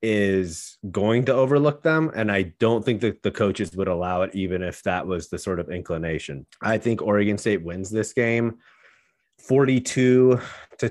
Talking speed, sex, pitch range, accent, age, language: 175 wpm, male, 95-120 Hz, American, 30-49, English